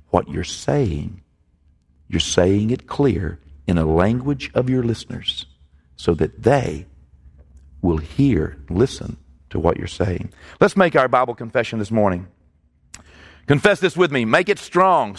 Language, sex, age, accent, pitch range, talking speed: English, male, 50-69, American, 125-190 Hz, 145 wpm